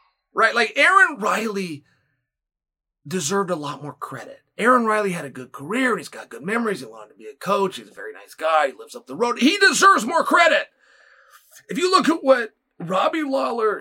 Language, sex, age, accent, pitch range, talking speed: English, male, 30-49, American, 175-255 Hz, 205 wpm